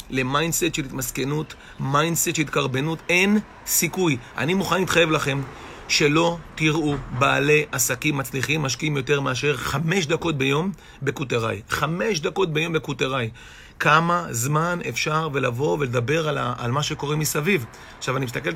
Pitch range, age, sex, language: 145-185 Hz, 40-59, male, Hebrew